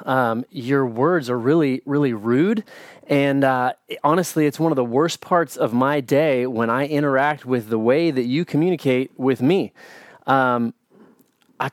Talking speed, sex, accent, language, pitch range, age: 165 wpm, male, American, English, 120-150 Hz, 30-49